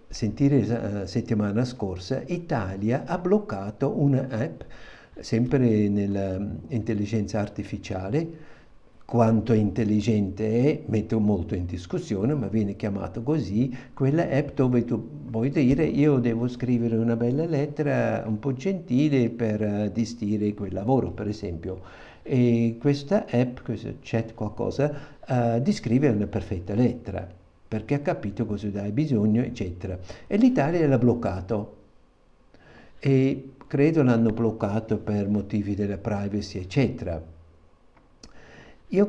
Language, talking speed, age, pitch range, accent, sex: Italian, 110 wpm, 60-79, 105-135 Hz, native, male